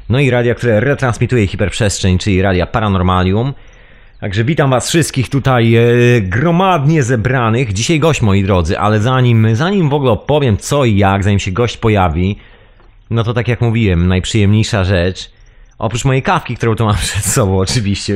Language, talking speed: Polish, 165 wpm